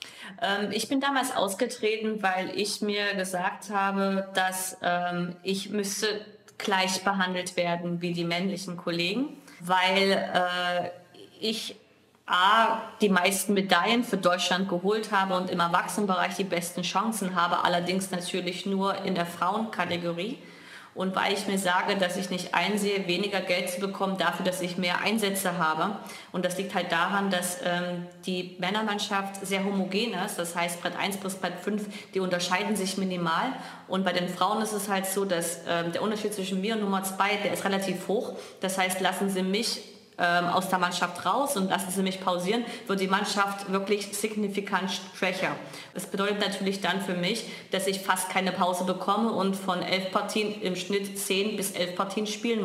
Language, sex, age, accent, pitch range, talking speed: German, female, 20-39, German, 180-205 Hz, 170 wpm